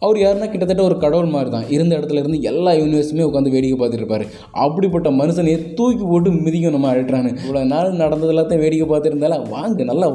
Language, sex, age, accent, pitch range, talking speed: Tamil, male, 20-39, native, 115-160 Hz, 175 wpm